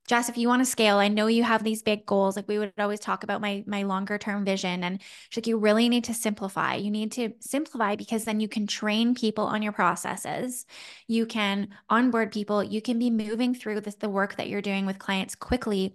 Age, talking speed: 10-29, 235 wpm